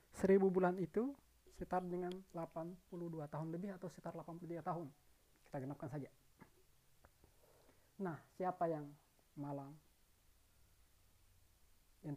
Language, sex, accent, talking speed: Indonesian, male, native, 100 wpm